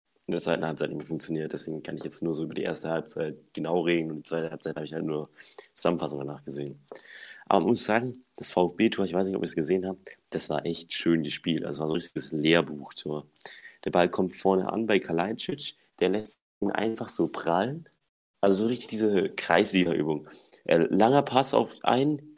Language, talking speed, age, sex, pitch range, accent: German, 210 wpm, 30-49, male, 80-105 Hz, German